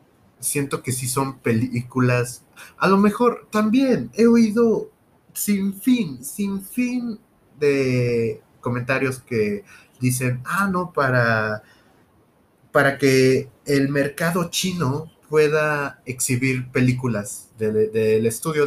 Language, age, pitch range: Spanish, 30-49, 115-175 Hz